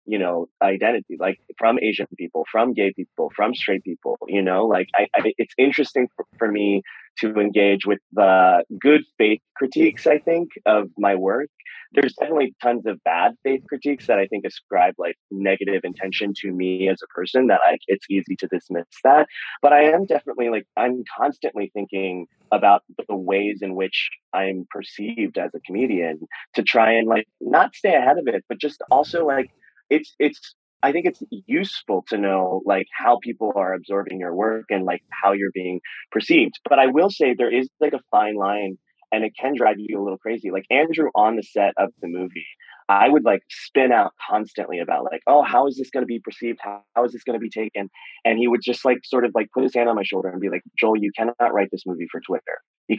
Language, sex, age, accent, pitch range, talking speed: English, male, 30-49, American, 95-125 Hz, 210 wpm